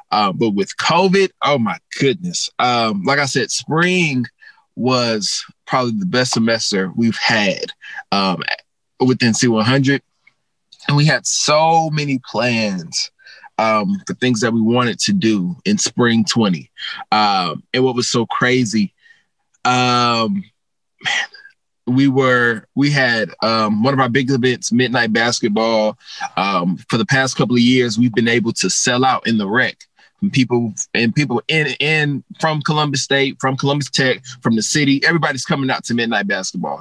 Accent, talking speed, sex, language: American, 160 wpm, male, English